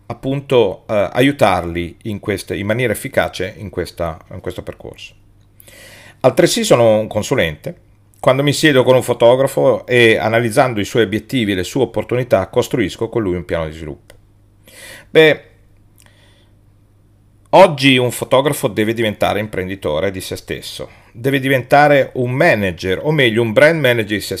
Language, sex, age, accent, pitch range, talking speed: Italian, male, 40-59, native, 100-120 Hz, 145 wpm